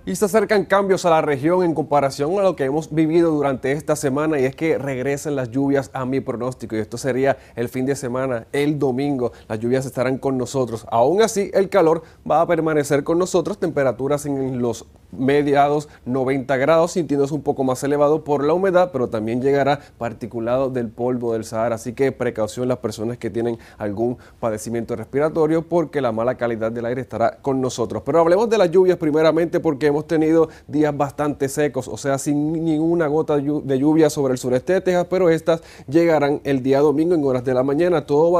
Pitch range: 130-160 Hz